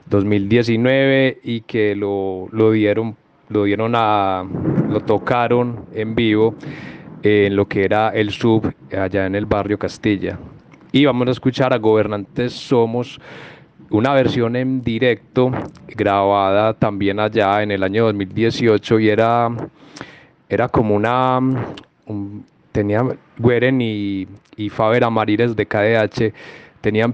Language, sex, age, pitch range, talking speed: English, male, 20-39, 100-120 Hz, 125 wpm